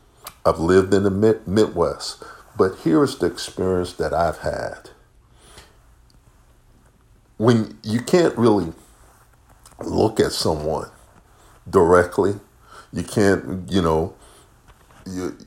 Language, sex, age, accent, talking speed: English, male, 50-69, American, 95 wpm